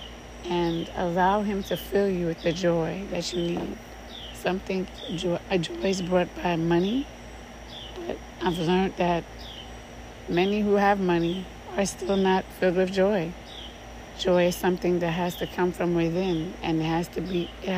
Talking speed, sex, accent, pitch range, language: 160 wpm, female, American, 170-200 Hz, English